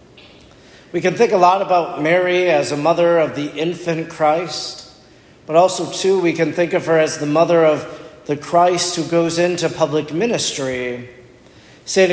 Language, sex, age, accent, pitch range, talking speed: English, male, 40-59, American, 140-170 Hz, 170 wpm